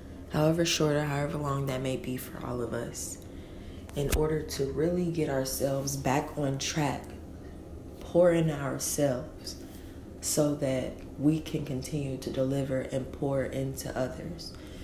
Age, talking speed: 20-39, 140 wpm